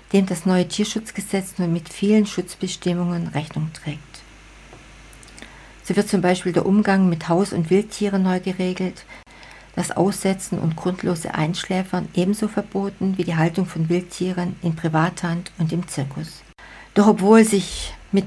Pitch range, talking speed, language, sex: 165-195 Hz, 140 wpm, German, female